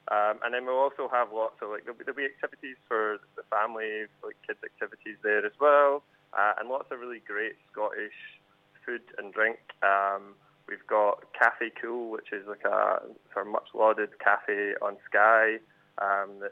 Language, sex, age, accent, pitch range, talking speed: English, male, 20-39, British, 100-115 Hz, 165 wpm